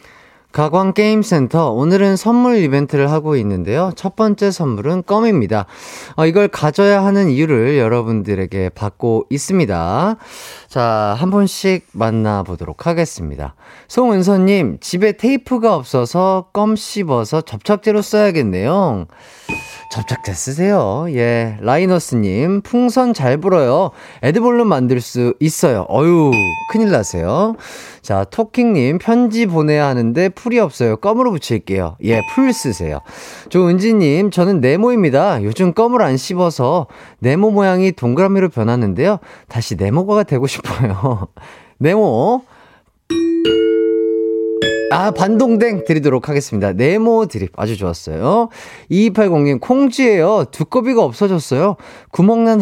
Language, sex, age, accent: Korean, male, 30-49, native